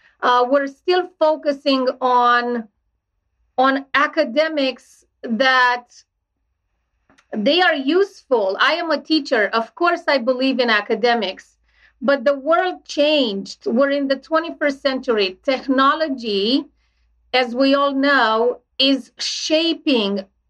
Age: 40-59